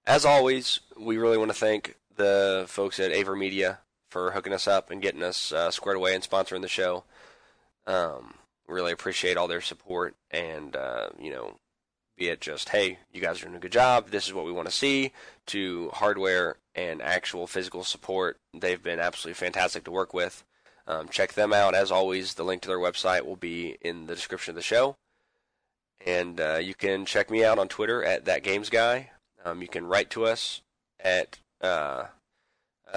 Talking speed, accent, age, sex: 190 wpm, American, 20-39, male